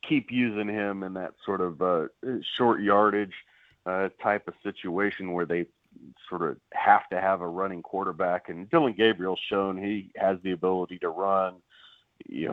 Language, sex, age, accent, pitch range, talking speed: English, male, 40-59, American, 90-105 Hz, 170 wpm